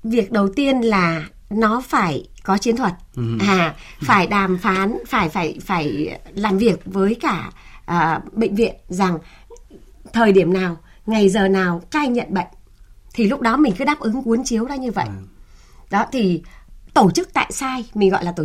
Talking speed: 180 wpm